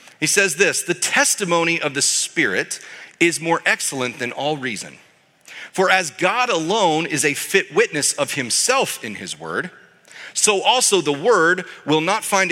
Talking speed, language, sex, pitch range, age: 165 wpm, English, male, 140-185 Hz, 40-59